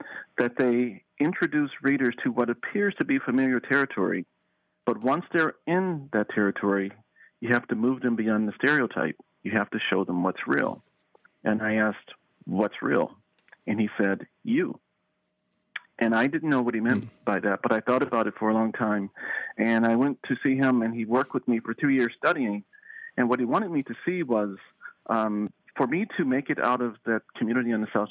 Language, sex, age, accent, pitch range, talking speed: English, male, 40-59, American, 110-130 Hz, 205 wpm